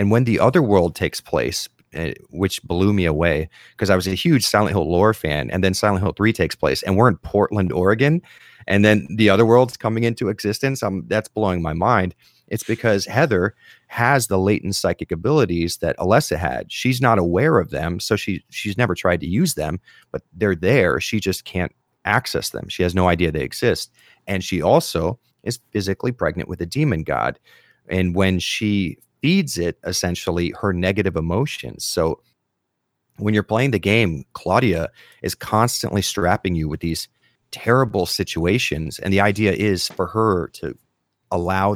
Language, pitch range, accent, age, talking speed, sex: English, 90-110 Hz, American, 30-49, 180 wpm, male